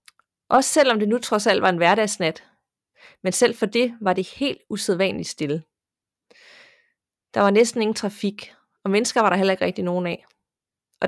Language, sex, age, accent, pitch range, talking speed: Danish, female, 30-49, native, 190-235 Hz, 180 wpm